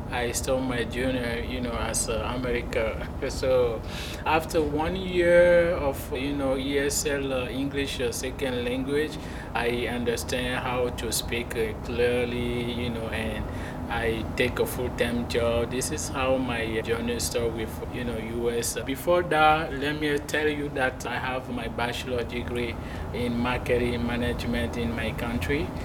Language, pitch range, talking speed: English, 115-135 Hz, 155 wpm